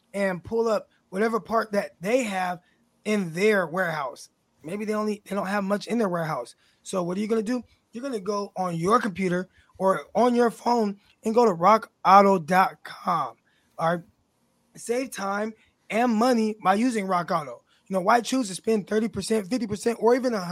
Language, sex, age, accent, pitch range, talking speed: English, male, 20-39, American, 185-230 Hz, 185 wpm